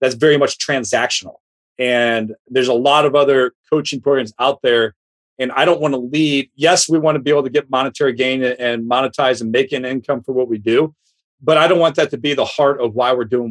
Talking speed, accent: 235 wpm, American